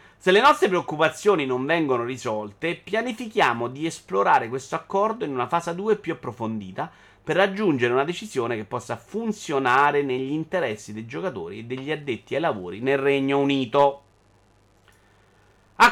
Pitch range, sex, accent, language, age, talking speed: 125-195 Hz, male, native, Italian, 30-49, 145 wpm